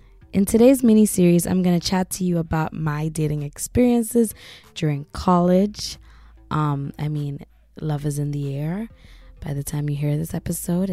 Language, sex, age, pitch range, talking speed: English, female, 20-39, 145-175 Hz, 165 wpm